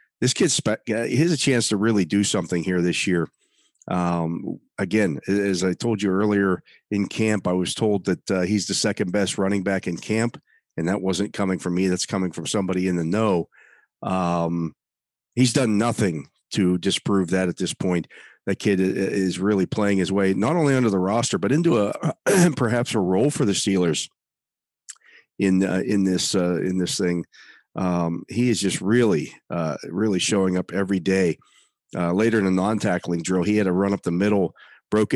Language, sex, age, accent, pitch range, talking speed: English, male, 40-59, American, 90-105 Hz, 190 wpm